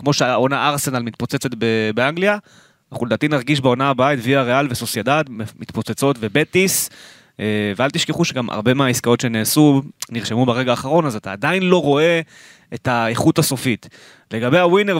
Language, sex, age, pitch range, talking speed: Hebrew, male, 20-39, 110-145 Hz, 140 wpm